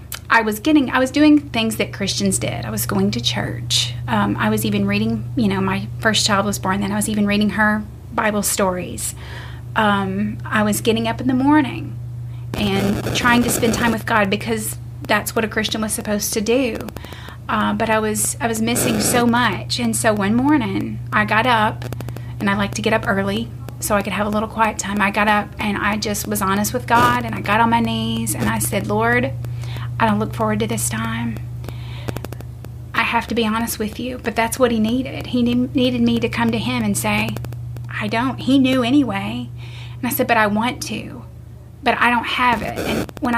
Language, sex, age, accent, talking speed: English, female, 30-49, American, 215 wpm